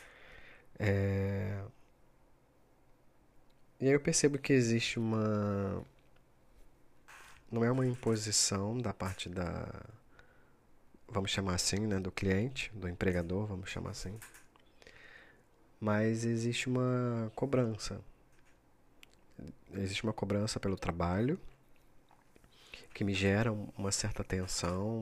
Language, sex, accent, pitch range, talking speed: Portuguese, male, Brazilian, 95-115 Hz, 95 wpm